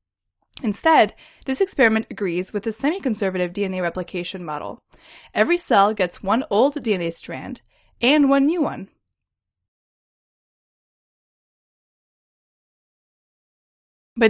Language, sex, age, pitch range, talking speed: English, female, 10-29, 185-260 Hz, 90 wpm